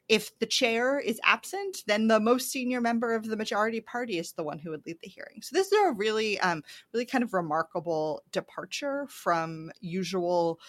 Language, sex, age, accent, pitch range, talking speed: English, female, 30-49, American, 180-250 Hz, 195 wpm